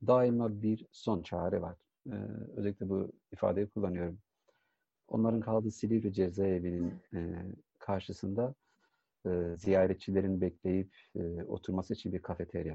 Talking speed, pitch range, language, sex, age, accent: 115 wpm, 90-110 Hz, Turkish, male, 50-69, native